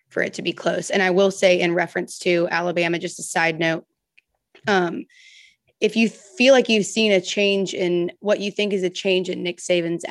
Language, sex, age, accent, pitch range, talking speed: English, female, 20-39, American, 180-210 Hz, 210 wpm